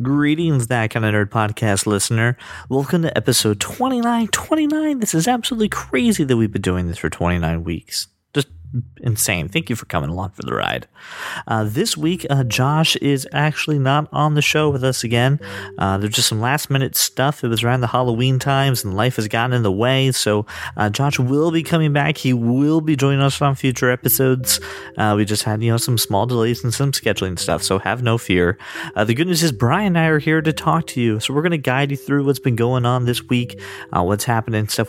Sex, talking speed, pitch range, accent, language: male, 220 wpm, 105-140 Hz, American, English